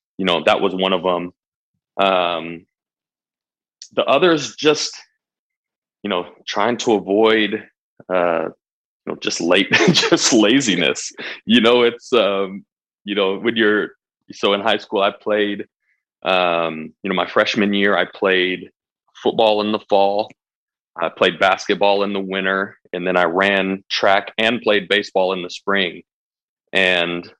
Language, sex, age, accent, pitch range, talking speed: English, male, 20-39, American, 90-105 Hz, 145 wpm